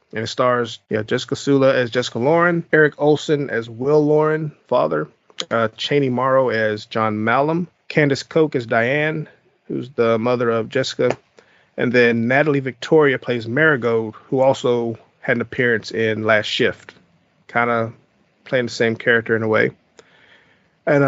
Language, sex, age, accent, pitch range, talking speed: English, male, 30-49, American, 115-140 Hz, 150 wpm